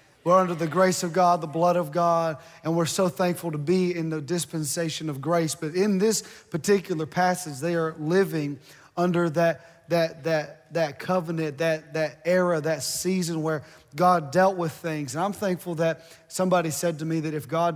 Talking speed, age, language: 190 wpm, 30-49, English